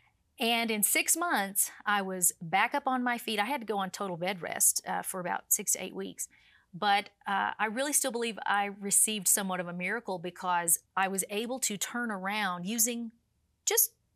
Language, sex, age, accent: English, female, 40-59, American